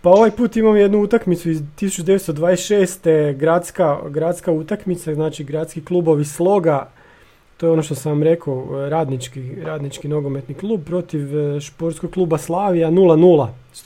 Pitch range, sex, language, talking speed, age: 145-185 Hz, male, Croatian, 135 wpm, 30-49